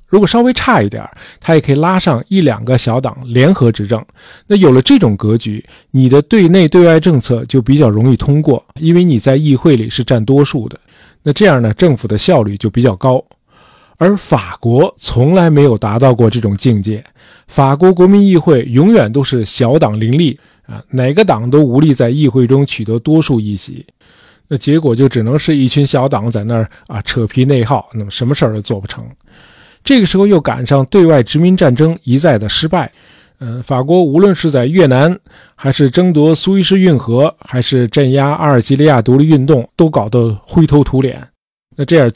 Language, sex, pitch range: Chinese, male, 120-160 Hz